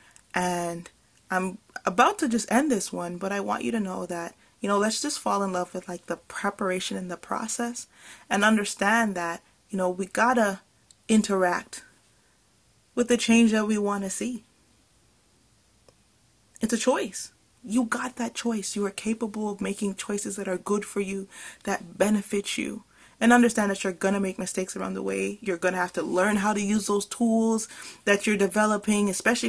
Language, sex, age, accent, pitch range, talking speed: English, female, 20-39, American, 185-230 Hz, 190 wpm